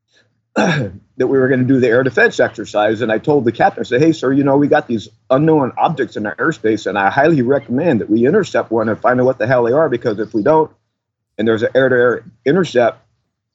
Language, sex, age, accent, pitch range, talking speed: English, male, 50-69, American, 105-140 Hz, 240 wpm